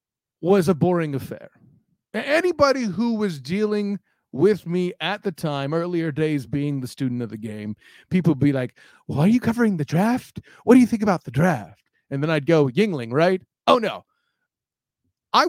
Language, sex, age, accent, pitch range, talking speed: English, male, 30-49, American, 165-260 Hz, 185 wpm